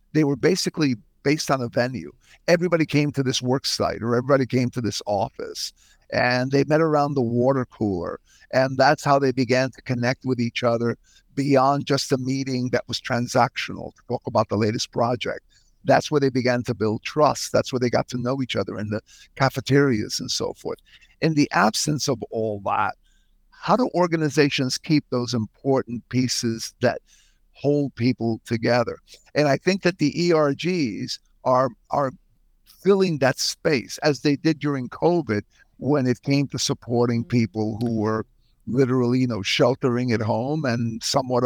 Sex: male